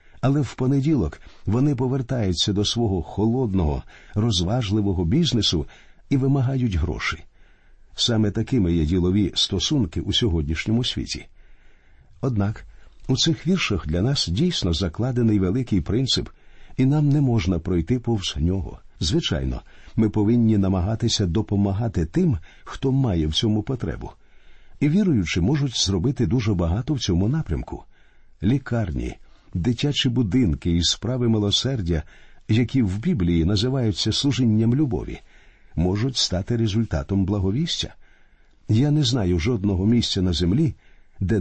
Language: Ukrainian